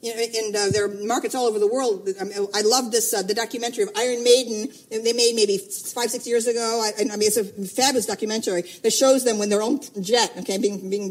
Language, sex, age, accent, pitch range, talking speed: English, female, 50-69, American, 205-255 Hz, 240 wpm